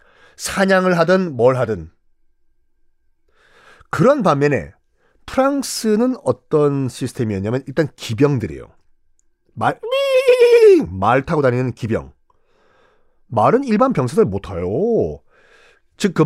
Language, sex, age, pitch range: Korean, male, 40-59, 125-210 Hz